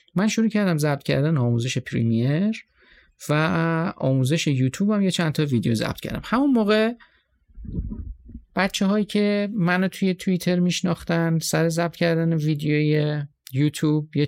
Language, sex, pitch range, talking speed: Persian, male, 135-185 Hz, 135 wpm